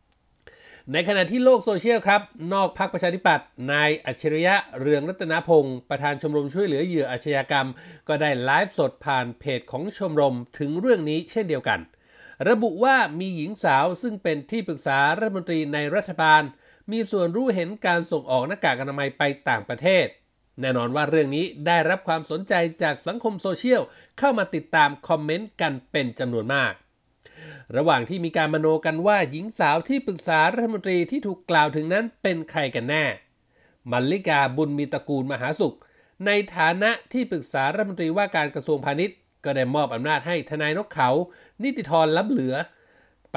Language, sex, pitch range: Thai, male, 145-195 Hz